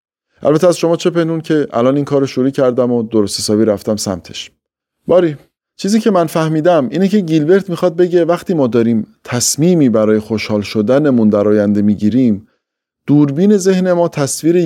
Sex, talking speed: male, 165 wpm